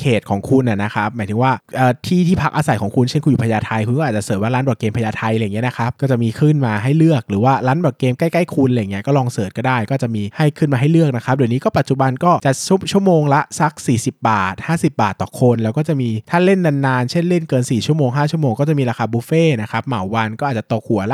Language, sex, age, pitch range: Thai, male, 20-39, 115-150 Hz